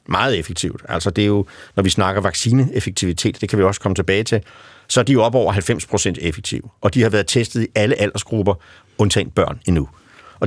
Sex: male